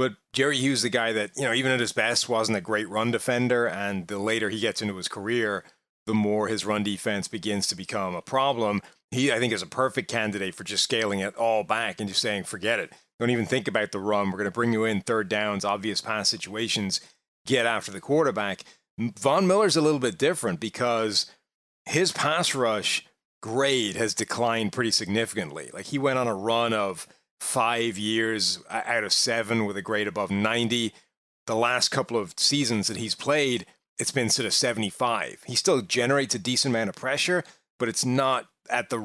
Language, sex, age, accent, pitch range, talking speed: English, male, 30-49, American, 105-125 Hz, 205 wpm